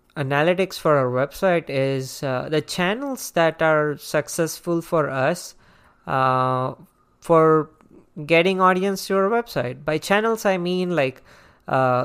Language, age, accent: English, 20-39, Indian